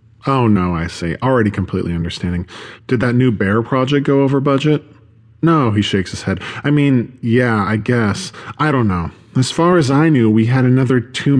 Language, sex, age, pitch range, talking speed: English, male, 40-59, 100-130 Hz, 195 wpm